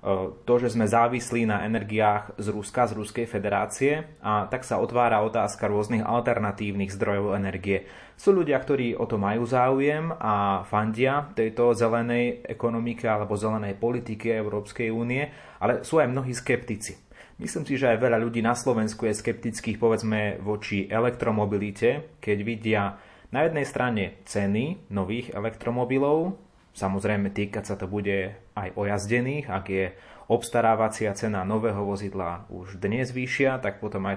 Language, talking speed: Slovak, 145 wpm